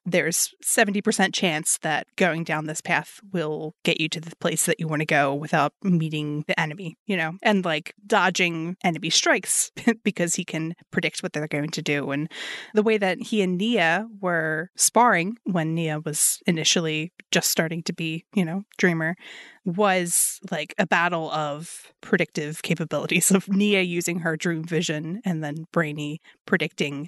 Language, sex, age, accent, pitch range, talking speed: English, female, 20-39, American, 160-200 Hz, 170 wpm